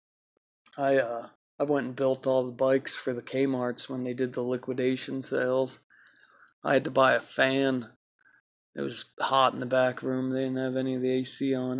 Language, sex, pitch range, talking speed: English, male, 130-140 Hz, 205 wpm